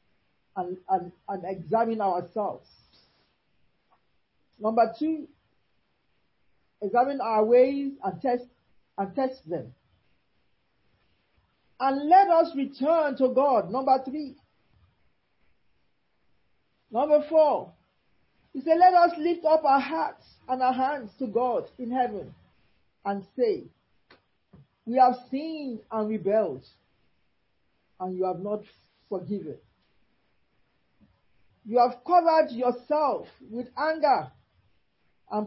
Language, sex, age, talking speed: English, male, 50-69, 100 wpm